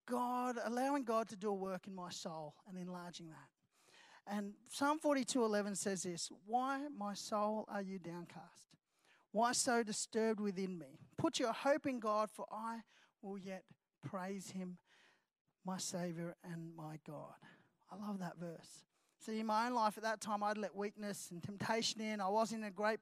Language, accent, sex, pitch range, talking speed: English, Australian, male, 185-220 Hz, 180 wpm